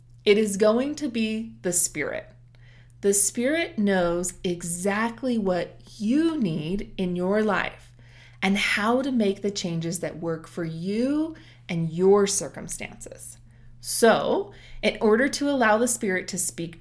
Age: 30-49